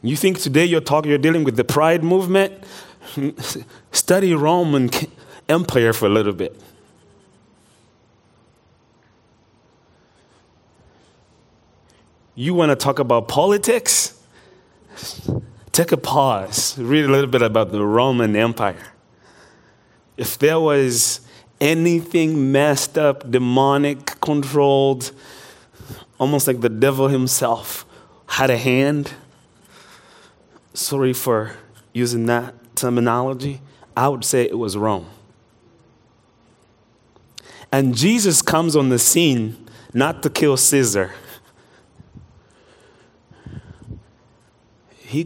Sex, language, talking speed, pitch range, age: male, English, 95 wpm, 115-145 Hz, 30-49